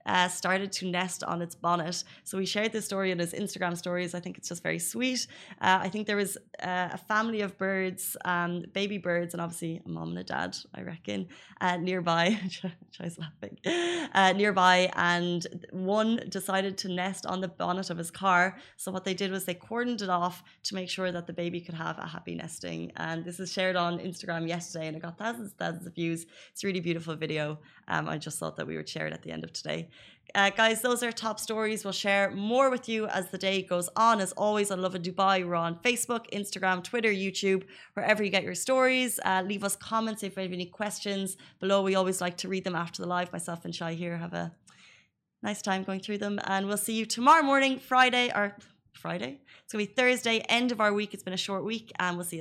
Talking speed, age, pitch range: 230 wpm, 20-39, 175-210 Hz